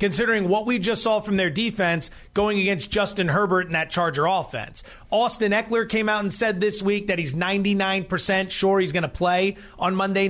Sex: male